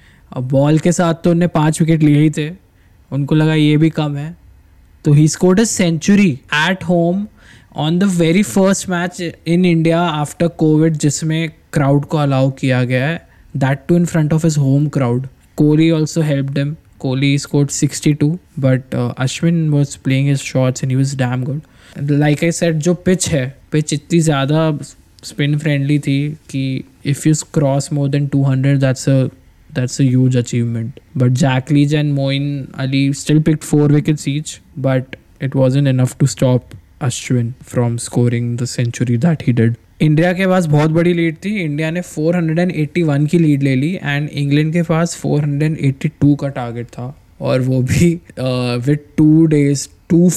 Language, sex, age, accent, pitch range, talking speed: Hindi, male, 20-39, native, 130-160 Hz, 160 wpm